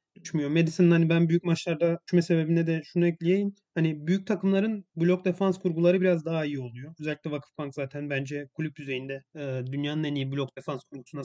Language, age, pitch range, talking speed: Turkish, 30-49, 150-180 Hz, 170 wpm